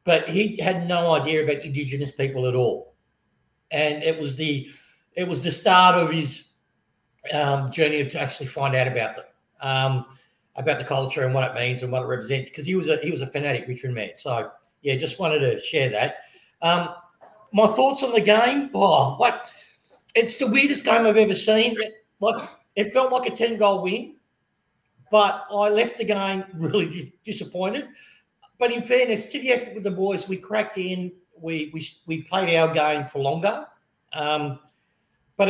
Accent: Australian